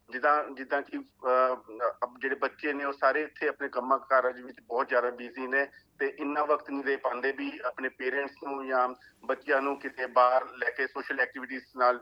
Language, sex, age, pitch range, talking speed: Punjabi, male, 50-69, 130-150 Hz, 185 wpm